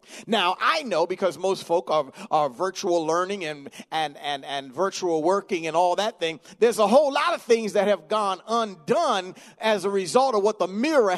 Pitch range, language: 185-235 Hz, English